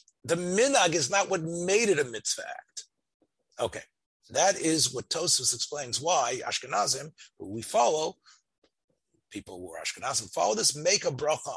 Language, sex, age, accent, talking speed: English, male, 40-59, American, 155 wpm